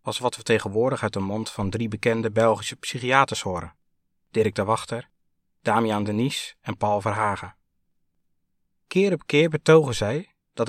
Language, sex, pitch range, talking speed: Dutch, male, 95-140 Hz, 150 wpm